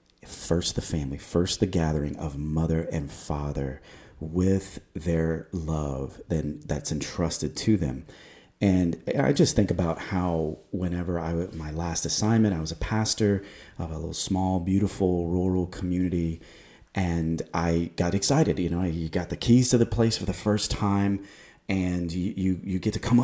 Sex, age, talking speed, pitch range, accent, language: male, 30-49, 170 wpm, 80-95 Hz, American, English